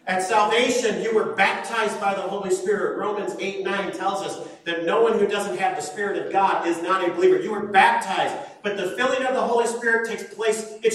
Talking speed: 225 wpm